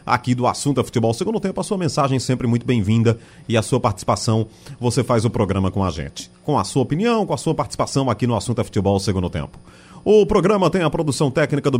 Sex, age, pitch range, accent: male, 30-49, 115-155 Hz, Brazilian